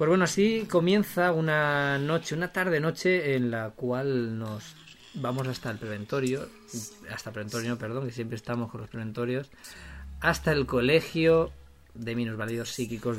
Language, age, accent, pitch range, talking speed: Spanish, 20-39, Spanish, 110-140 Hz, 145 wpm